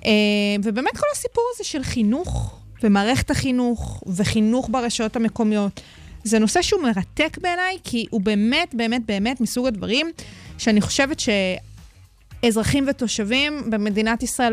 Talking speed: 120 wpm